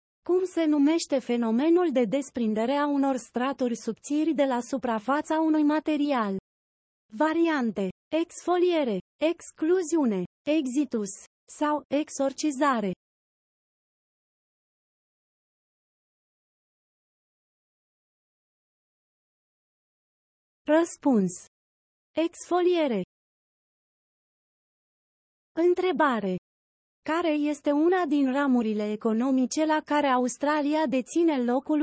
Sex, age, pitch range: female, 30-49, 235-315 Hz